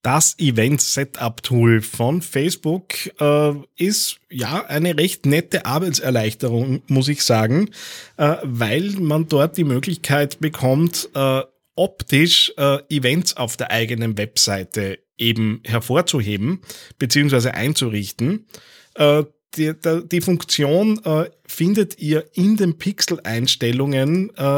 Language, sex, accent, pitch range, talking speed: English, male, Austrian, 130-165 Hz, 105 wpm